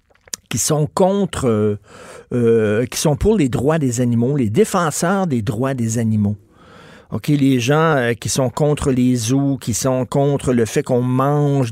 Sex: male